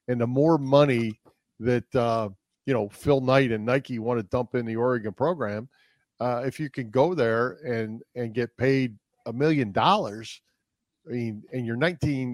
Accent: American